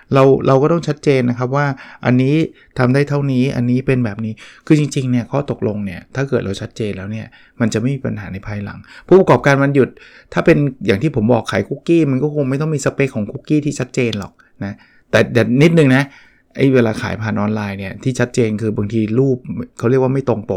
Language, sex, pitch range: Thai, male, 110-140 Hz